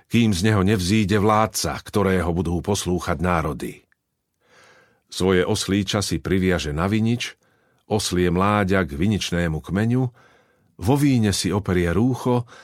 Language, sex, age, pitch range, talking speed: Slovak, male, 50-69, 95-120 Hz, 120 wpm